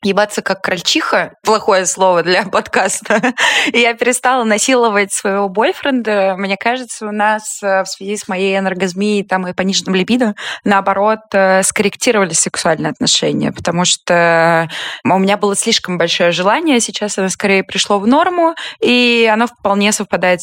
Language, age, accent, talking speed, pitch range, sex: Russian, 20-39, native, 140 wpm, 180-225 Hz, female